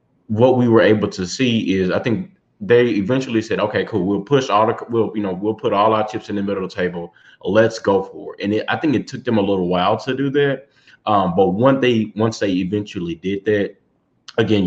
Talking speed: 240 wpm